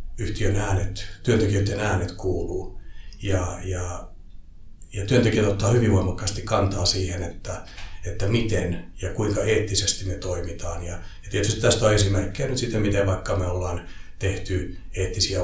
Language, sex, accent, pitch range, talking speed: Finnish, male, native, 90-105 Hz, 140 wpm